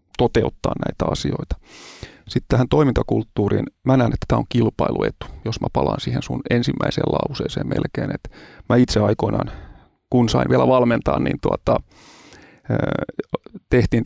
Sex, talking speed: male, 130 wpm